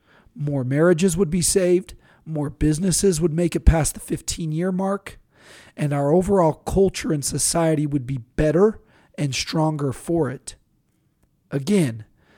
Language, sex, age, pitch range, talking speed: English, male, 40-59, 130-170 Hz, 135 wpm